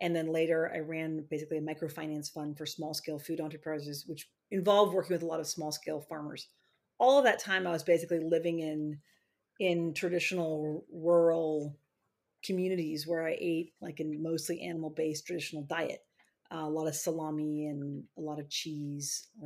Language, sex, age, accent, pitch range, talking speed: English, female, 40-59, American, 155-185 Hz, 165 wpm